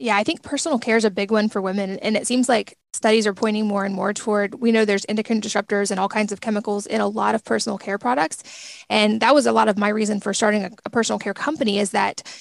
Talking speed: 270 wpm